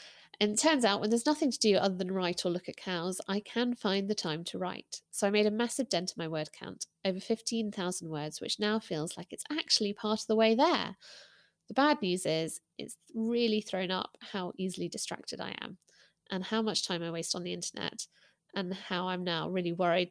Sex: female